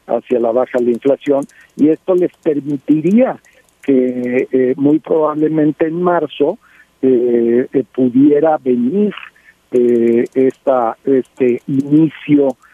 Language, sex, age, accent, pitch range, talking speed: Spanish, male, 60-79, Mexican, 125-155 Hz, 115 wpm